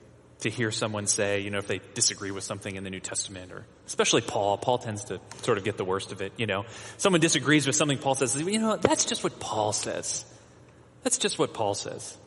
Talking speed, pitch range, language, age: 235 wpm, 110-170 Hz, English, 30-49